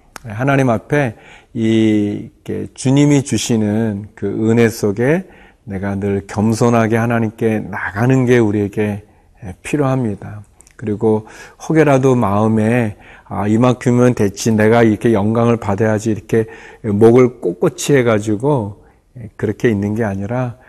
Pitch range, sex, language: 105-125 Hz, male, Korean